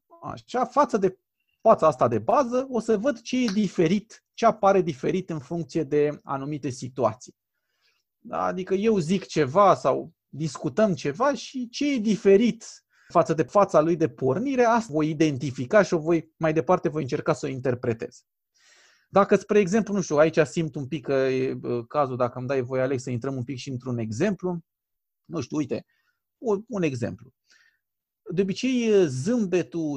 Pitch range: 145-215 Hz